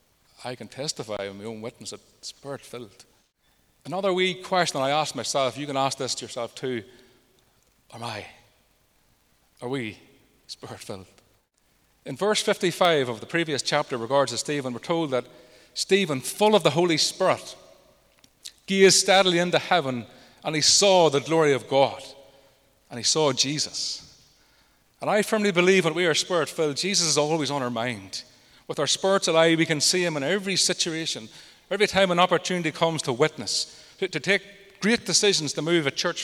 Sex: male